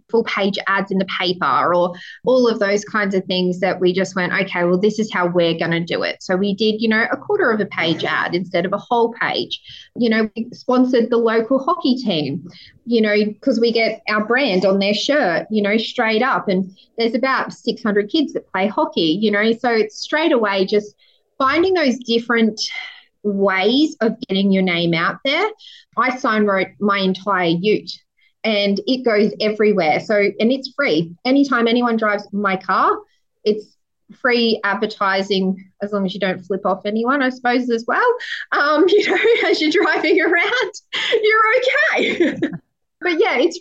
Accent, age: Australian, 20-39